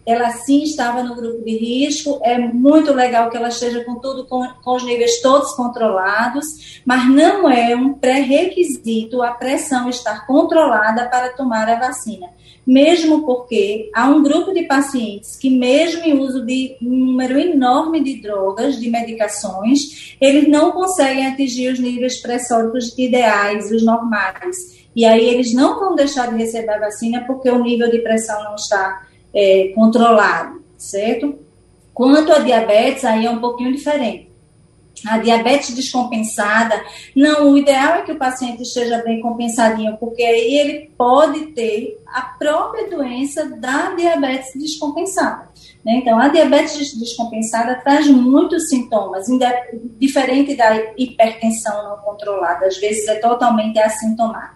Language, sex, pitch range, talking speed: Portuguese, female, 225-280 Hz, 145 wpm